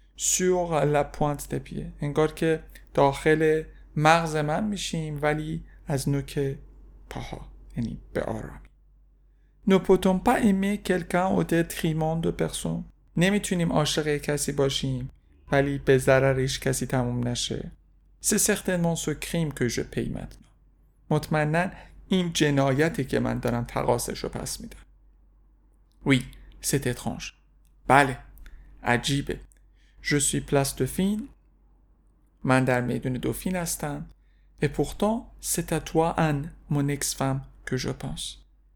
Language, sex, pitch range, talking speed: Persian, male, 125-160 Hz, 110 wpm